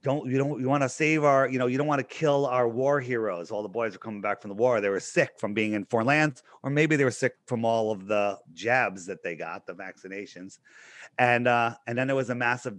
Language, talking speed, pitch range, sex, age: English, 270 wpm, 110-135 Hz, male, 30-49